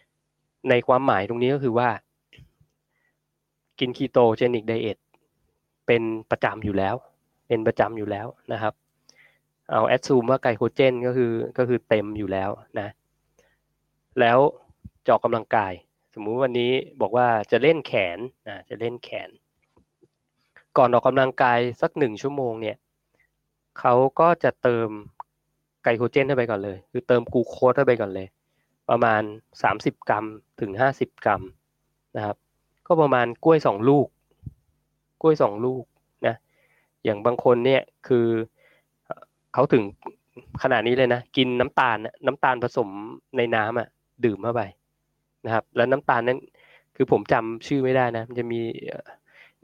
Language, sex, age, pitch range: Thai, male, 20-39, 115-130 Hz